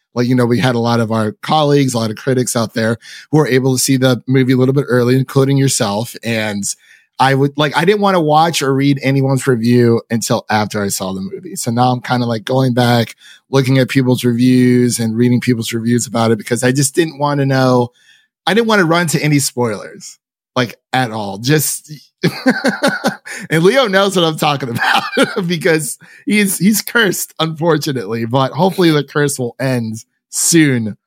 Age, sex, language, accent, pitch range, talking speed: 30-49, male, English, American, 115-150 Hz, 200 wpm